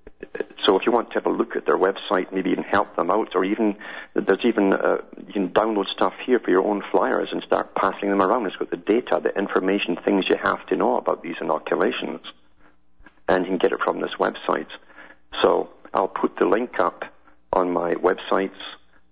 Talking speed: 205 wpm